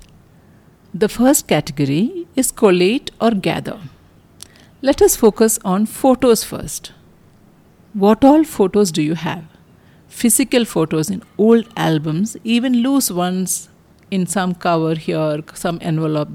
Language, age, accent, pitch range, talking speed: English, 50-69, Indian, 175-230 Hz, 120 wpm